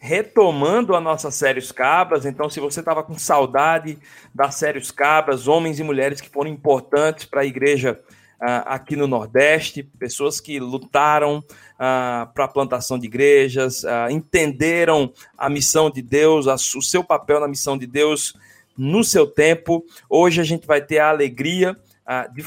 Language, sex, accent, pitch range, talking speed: Portuguese, male, Brazilian, 130-165 Hz, 165 wpm